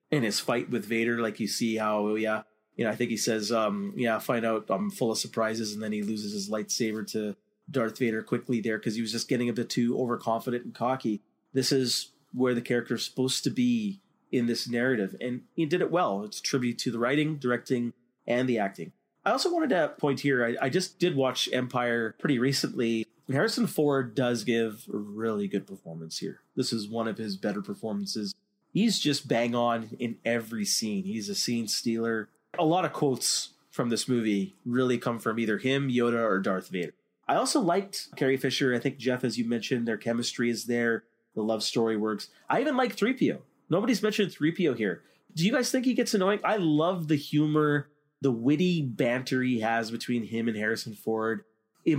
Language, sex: English, male